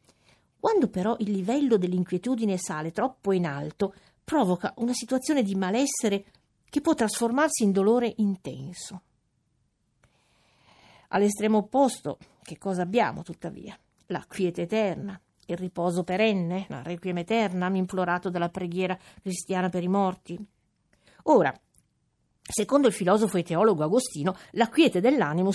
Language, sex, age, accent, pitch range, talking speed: Italian, female, 50-69, native, 175-230 Hz, 120 wpm